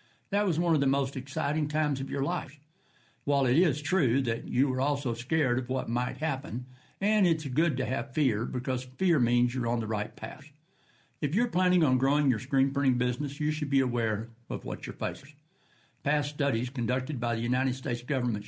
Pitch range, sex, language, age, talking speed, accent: 120-150 Hz, male, English, 60-79, 205 wpm, American